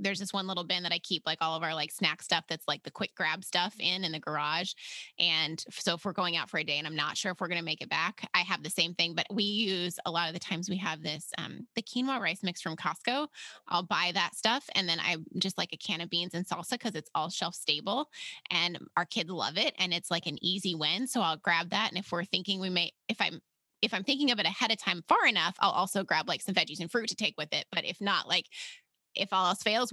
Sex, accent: female, American